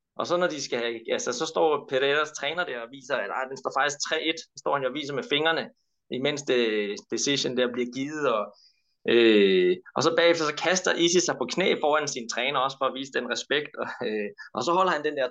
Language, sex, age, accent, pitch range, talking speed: Danish, male, 20-39, native, 125-165 Hz, 230 wpm